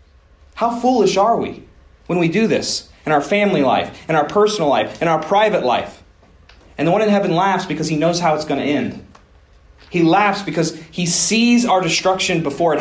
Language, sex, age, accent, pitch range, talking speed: English, male, 30-49, American, 125-175 Hz, 200 wpm